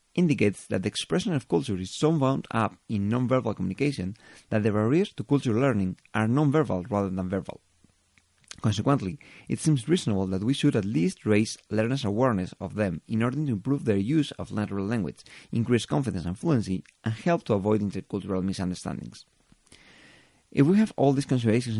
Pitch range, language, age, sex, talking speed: 95-130 Hz, English, 30-49, male, 175 wpm